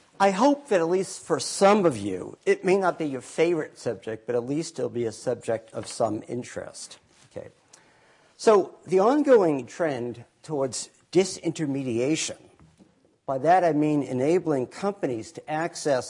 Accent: American